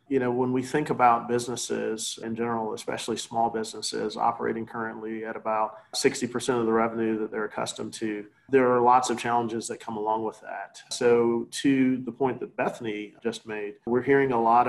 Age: 40-59